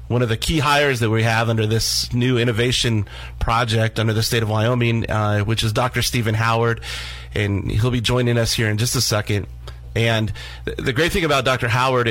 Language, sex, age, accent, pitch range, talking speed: English, male, 30-49, American, 105-125 Hz, 205 wpm